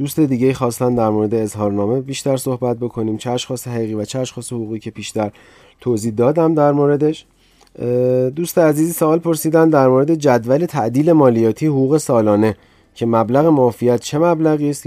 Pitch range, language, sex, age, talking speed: 120-155 Hz, Persian, male, 30-49, 155 wpm